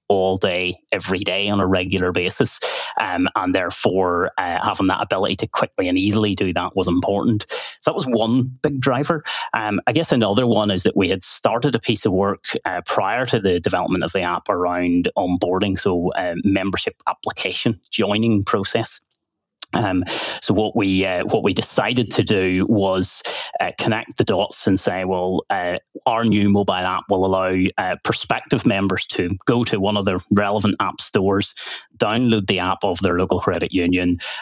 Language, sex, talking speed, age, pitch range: English, male, 180 wpm, 30-49, 90-105 Hz